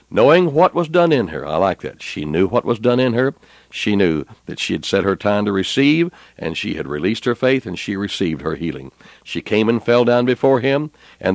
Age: 60-79